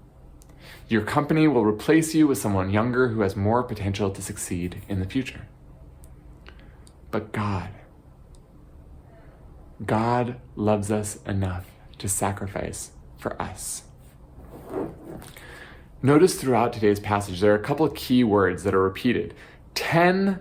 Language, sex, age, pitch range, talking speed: English, male, 30-49, 95-125 Hz, 125 wpm